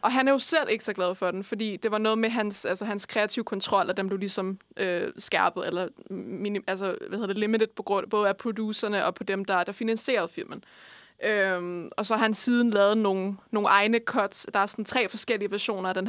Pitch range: 195-225 Hz